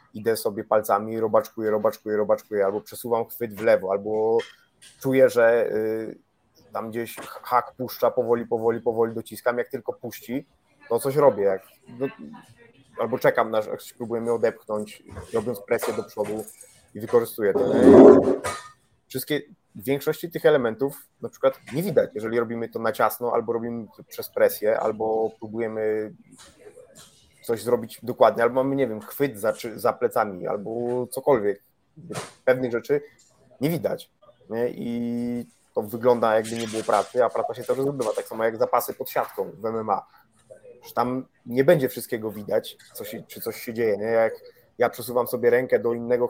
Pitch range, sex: 110-140 Hz, male